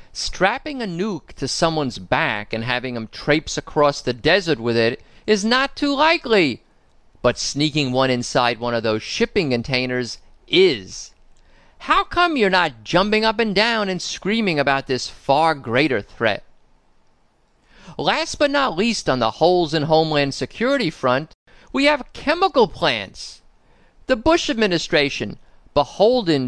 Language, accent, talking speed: English, American, 145 wpm